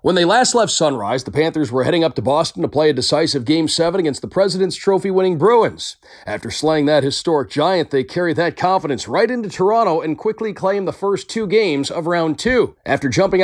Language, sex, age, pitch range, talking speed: English, male, 40-59, 140-190 Hz, 210 wpm